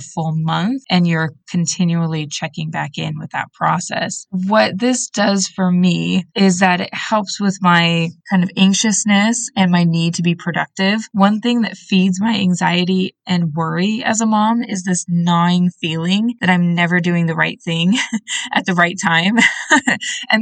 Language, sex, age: English, female, 20-39